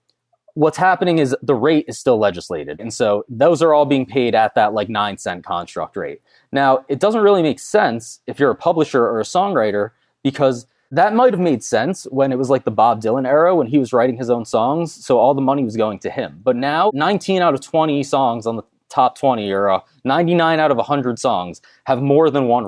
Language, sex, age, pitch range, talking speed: English, male, 20-39, 125-160 Hz, 220 wpm